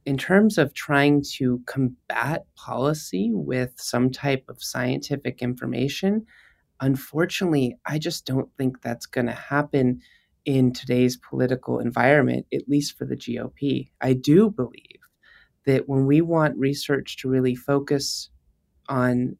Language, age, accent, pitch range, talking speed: English, 30-49, American, 125-150 Hz, 135 wpm